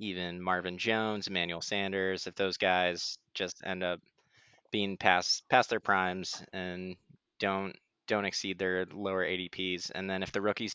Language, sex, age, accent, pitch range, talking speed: English, male, 20-39, American, 95-110 Hz, 155 wpm